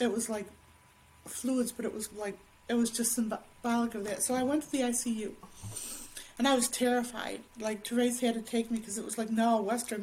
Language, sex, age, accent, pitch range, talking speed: English, female, 40-59, American, 220-255 Hz, 215 wpm